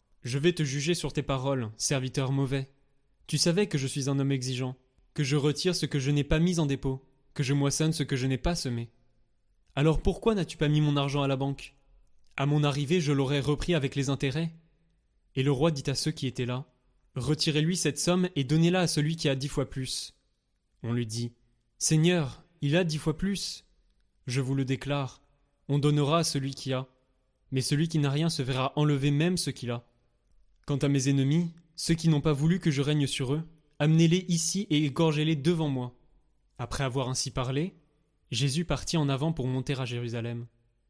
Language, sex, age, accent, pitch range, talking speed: French, male, 20-39, French, 130-155 Hz, 205 wpm